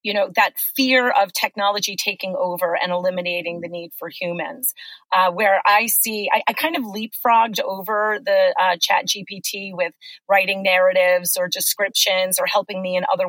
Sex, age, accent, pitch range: female, 30-49, American, 180-225 Hz